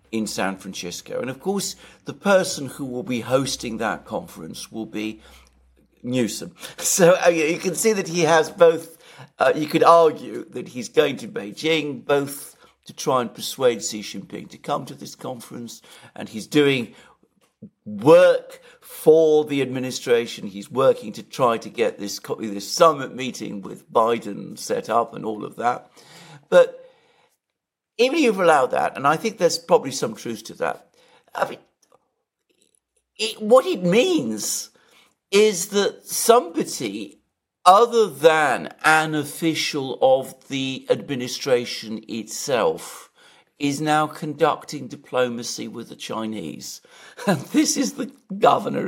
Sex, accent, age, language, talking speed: male, British, 60-79, English, 140 wpm